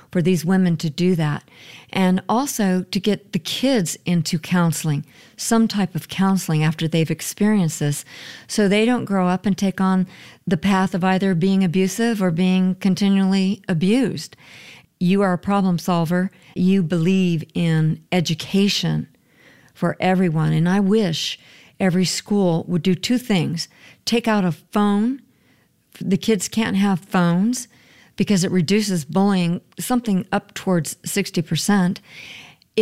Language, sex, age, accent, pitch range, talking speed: English, female, 50-69, American, 175-200 Hz, 140 wpm